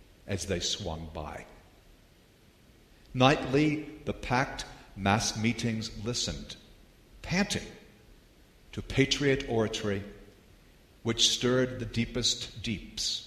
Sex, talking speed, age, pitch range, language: male, 85 wpm, 50-69, 100-125 Hz, English